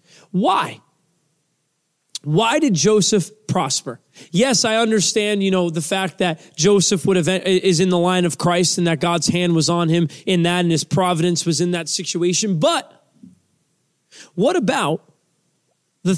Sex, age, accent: male, 30-49, American